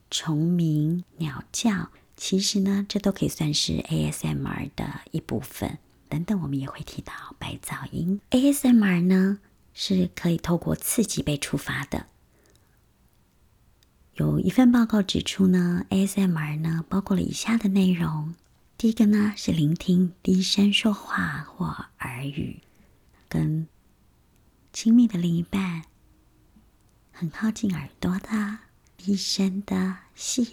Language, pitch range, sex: Chinese, 150-200 Hz, male